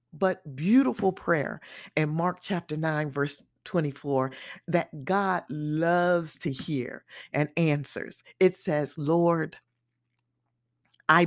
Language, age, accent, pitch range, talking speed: English, 50-69, American, 140-190 Hz, 105 wpm